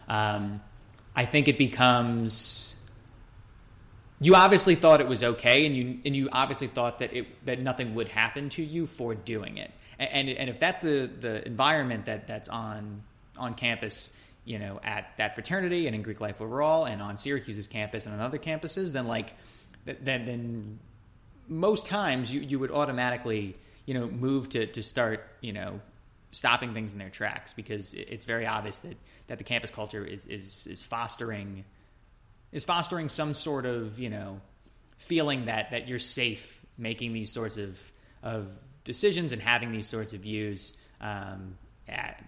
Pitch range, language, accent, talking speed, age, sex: 105-130 Hz, English, American, 170 wpm, 20-39, male